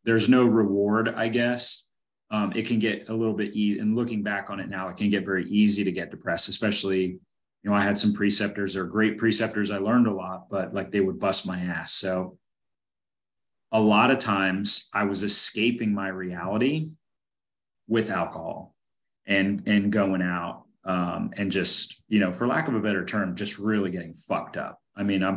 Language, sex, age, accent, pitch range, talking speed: English, male, 30-49, American, 95-110 Hz, 195 wpm